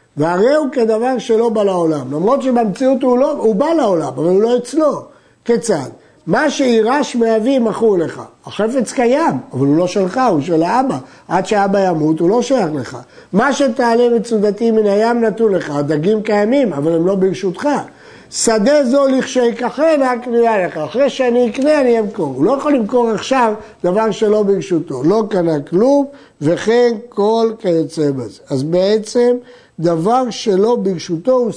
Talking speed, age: 160 wpm, 50-69